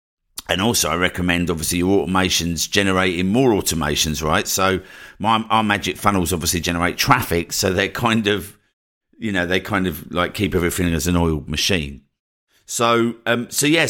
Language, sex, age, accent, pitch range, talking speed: English, male, 50-69, British, 85-105 Hz, 170 wpm